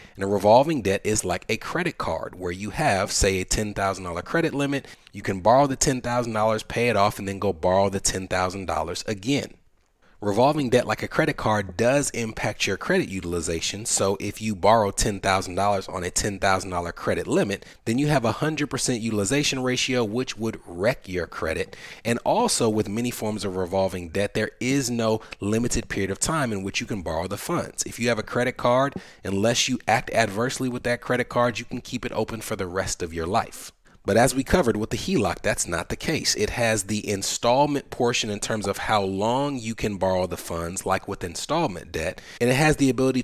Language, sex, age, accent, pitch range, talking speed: English, male, 30-49, American, 95-125 Hz, 205 wpm